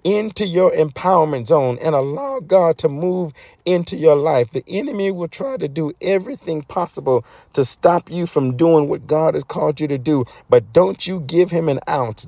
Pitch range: 150-180 Hz